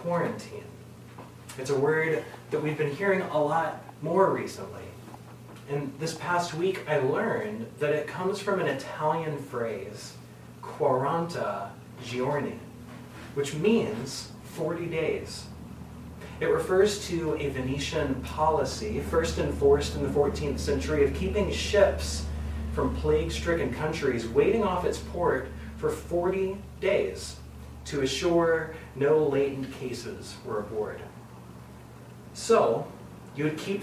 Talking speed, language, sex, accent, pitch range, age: 120 wpm, English, male, American, 125-175 Hz, 30-49